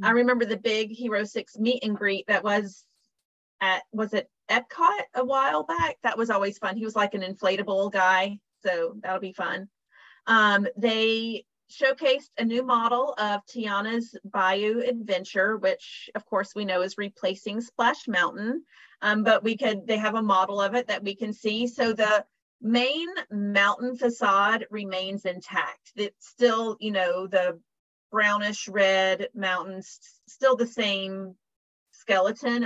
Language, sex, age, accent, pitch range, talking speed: English, female, 30-49, American, 195-240 Hz, 155 wpm